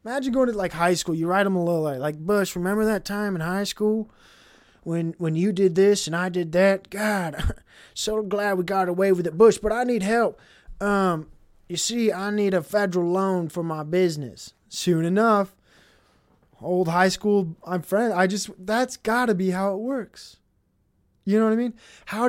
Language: English